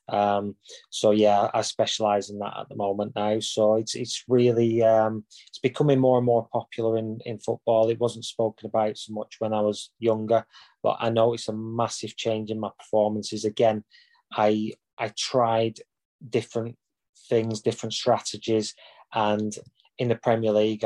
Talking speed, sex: 165 wpm, male